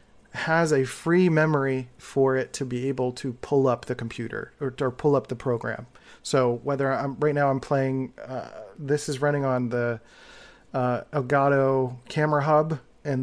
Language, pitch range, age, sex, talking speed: English, 125-150 Hz, 40-59, male, 170 wpm